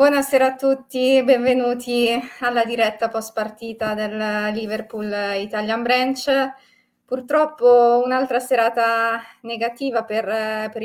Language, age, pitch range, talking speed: Italian, 20-39, 215-245 Hz, 100 wpm